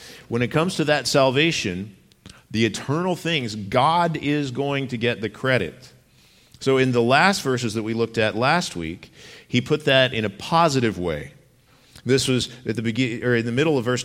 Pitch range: 110-140 Hz